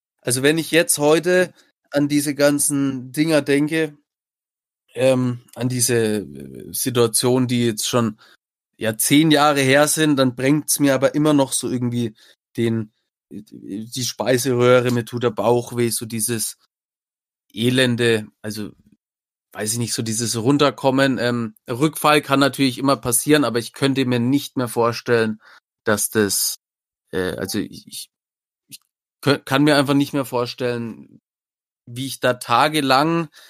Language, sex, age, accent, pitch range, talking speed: German, male, 30-49, German, 120-145 Hz, 140 wpm